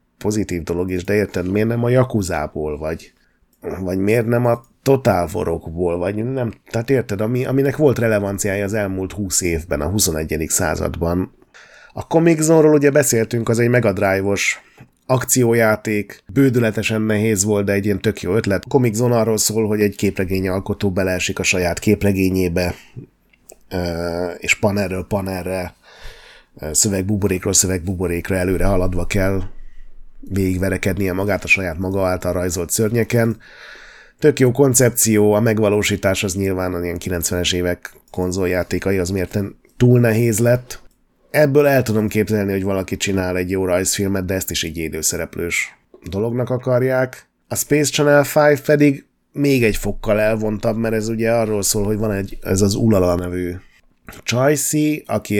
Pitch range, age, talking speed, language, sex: 90-115 Hz, 30-49, 145 wpm, Hungarian, male